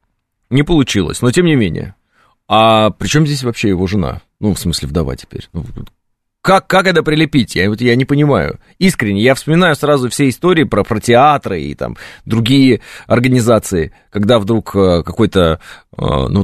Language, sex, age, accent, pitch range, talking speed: Russian, male, 30-49, native, 100-140 Hz, 160 wpm